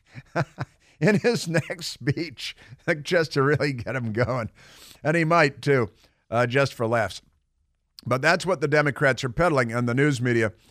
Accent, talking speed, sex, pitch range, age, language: American, 170 wpm, male, 110-135 Hz, 50-69, English